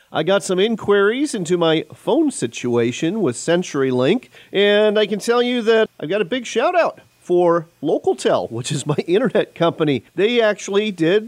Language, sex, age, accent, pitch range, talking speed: English, male, 40-59, American, 135-190 Hz, 170 wpm